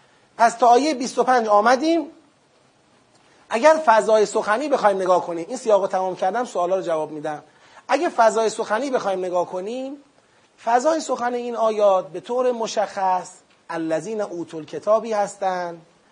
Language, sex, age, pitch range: Persian, male, 30-49, 165-225 Hz